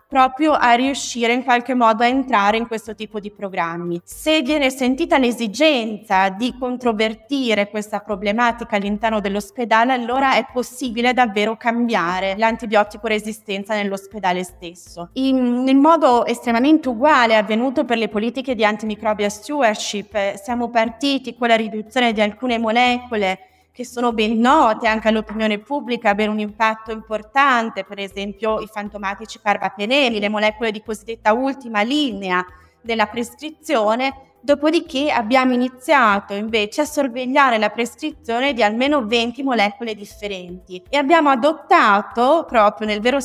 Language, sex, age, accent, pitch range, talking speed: Italian, female, 20-39, native, 215-265 Hz, 130 wpm